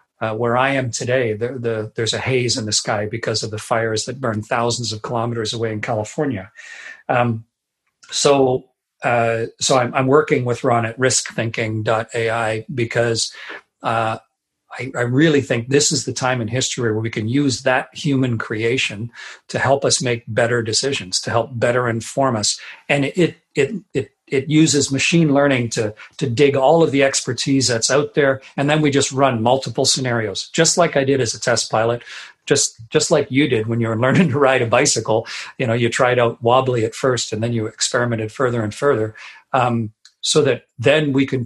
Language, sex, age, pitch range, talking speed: English, male, 40-59, 115-135 Hz, 195 wpm